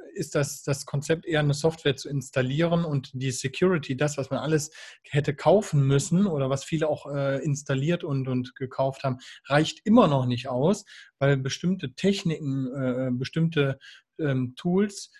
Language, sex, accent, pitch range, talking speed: German, male, German, 130-155 Hz, 150 wpm